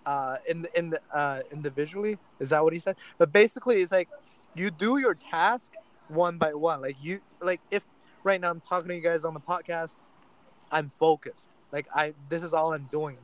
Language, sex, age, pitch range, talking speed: English, male, 20-39, 150-175 Hz, 220 wpm